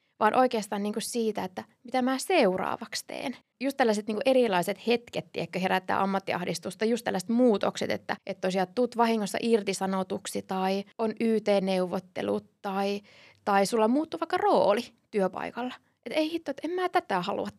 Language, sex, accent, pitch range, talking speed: Finnish, female, native, 195-260 Hz, 150 wpm